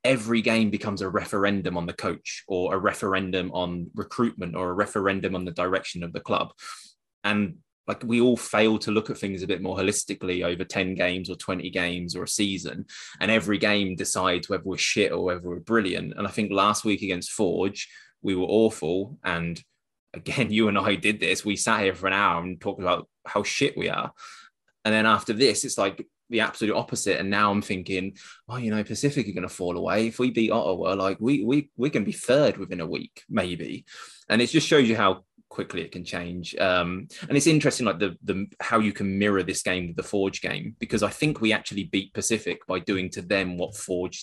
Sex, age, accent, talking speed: male, 20-39, British, 220 wpm